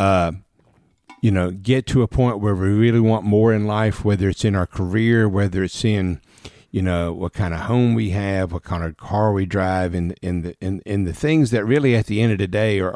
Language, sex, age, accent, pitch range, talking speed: English, male, 50-69, American, 95-115 Hz, 240 wpm